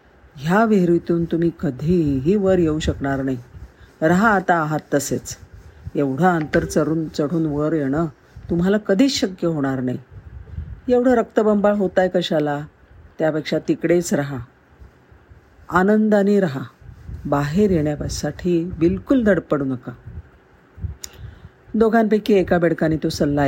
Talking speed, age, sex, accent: 105 wpm, 50-69, female, native